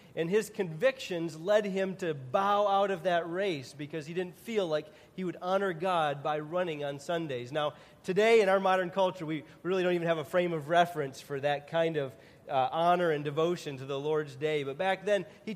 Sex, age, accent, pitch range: male, 40-59, American, 160-210 Hz